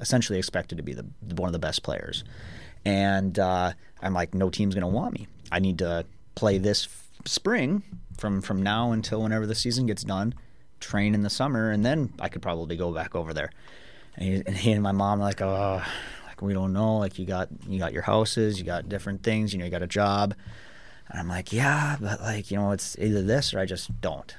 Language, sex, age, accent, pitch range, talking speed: English, male, 30-49, American, 95-110 Hz, 225 wpm